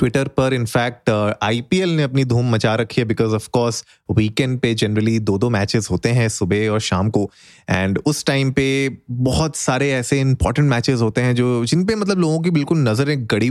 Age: 30-49